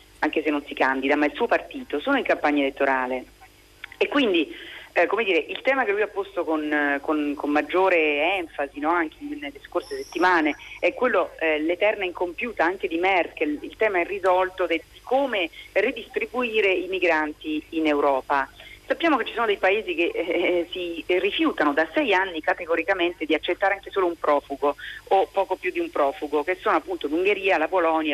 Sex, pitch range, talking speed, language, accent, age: female, 160-230 Hz, 180 wpm, Italian, native, 40-59